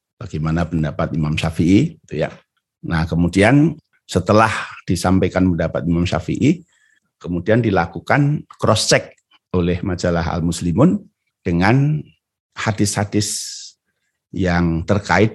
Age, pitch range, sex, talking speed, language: 50-69, 85-110 Hz, male, 95 wpm, Indonesian